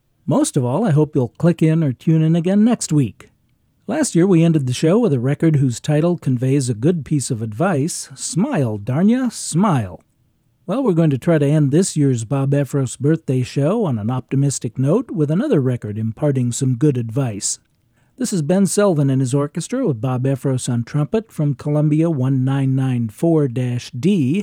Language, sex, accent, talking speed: English, male, American, 180 wpm